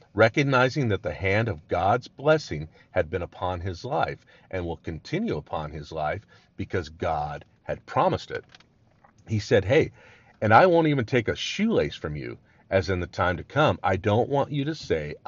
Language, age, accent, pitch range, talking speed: English, 50-69, American, 80-115 Hz, 185 wpm